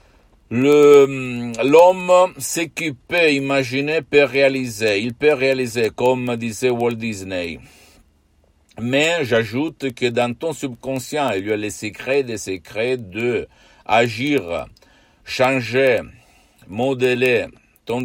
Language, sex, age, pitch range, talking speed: Italian, male, 60-79, 105-130 Hz, 110 wpm